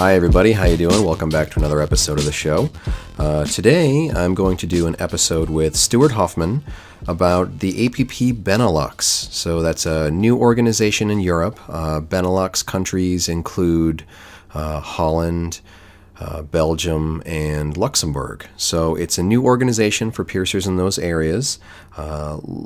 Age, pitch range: 30-49, 80-95 Hz